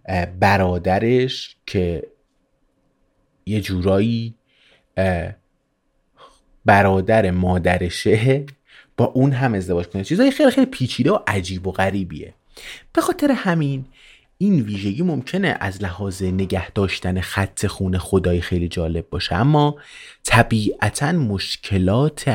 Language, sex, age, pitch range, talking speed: Persian, male, 30-49, 90-115 Hz, 105 wpm